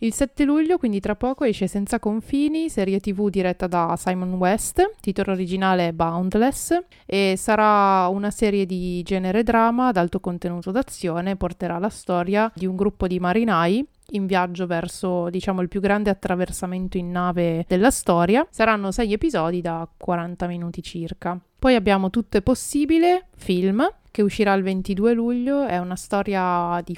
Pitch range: 175-215 Hz